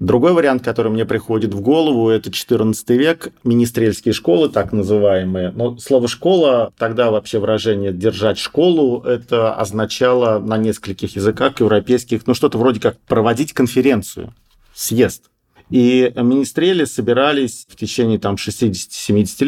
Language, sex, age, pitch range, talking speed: Russian, male, 40-59, 105-125 Hz, 125 wpm